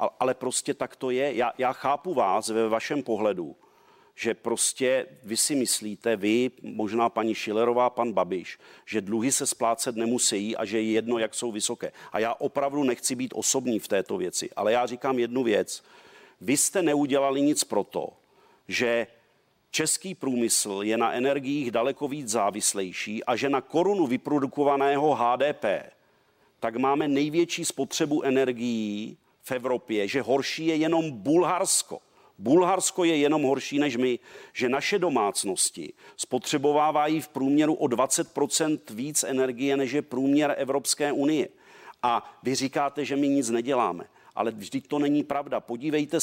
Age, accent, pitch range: 40-59, native, 120-150 Hz